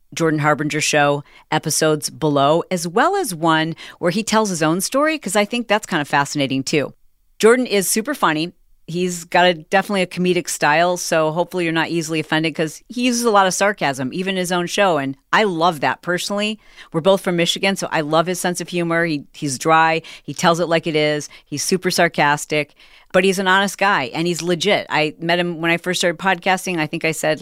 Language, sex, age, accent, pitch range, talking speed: English, female, 40-59, American, 150-190 Hz, 220 wpm